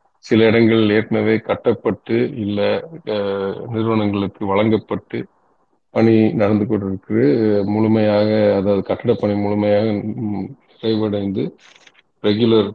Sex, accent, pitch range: male, native, 105-125 Hz